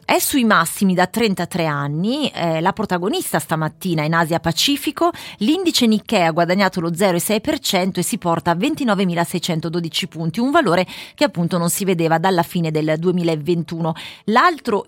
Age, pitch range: 30-49, 170-230 Hz